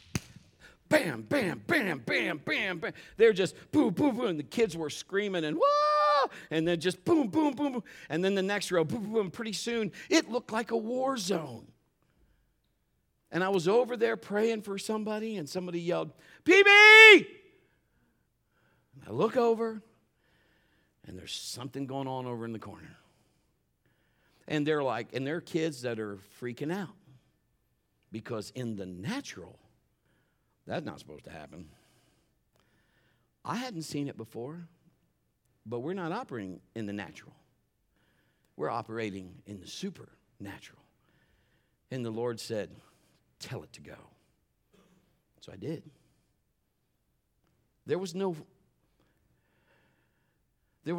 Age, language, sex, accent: 50-69, English, male, American